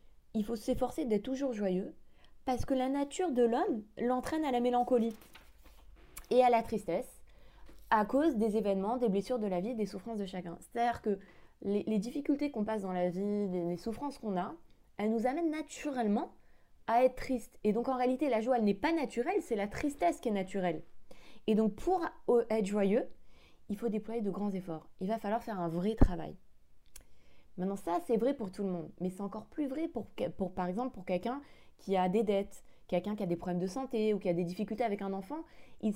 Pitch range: 190-255 Hz